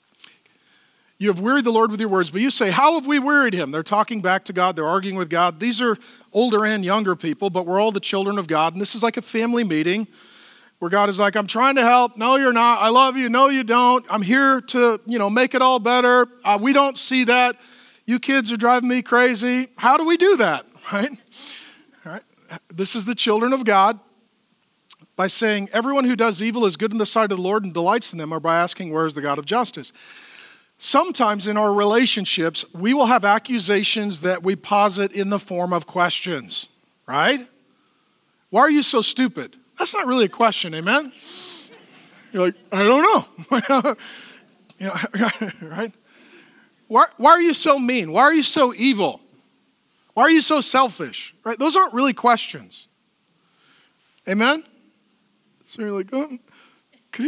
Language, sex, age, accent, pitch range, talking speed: English, male, 40-59, American, 200-260 Hz, 195 wpm